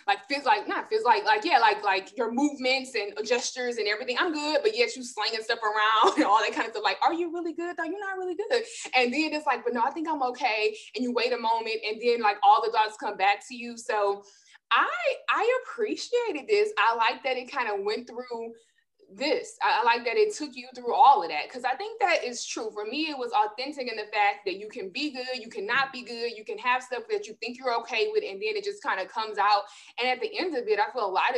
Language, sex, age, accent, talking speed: English, female, 20-39, American, 270 wpm